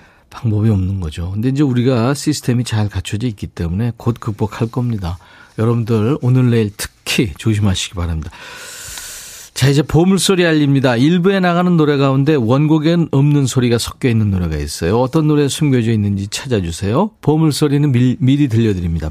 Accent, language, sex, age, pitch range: native, Korean, male, 40-59, 100-140 Hz